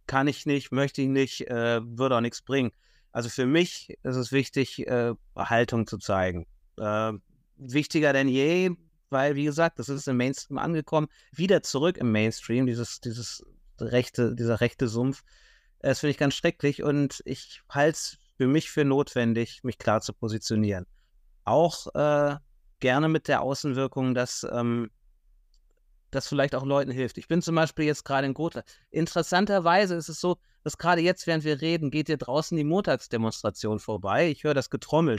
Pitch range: 120-150 Hz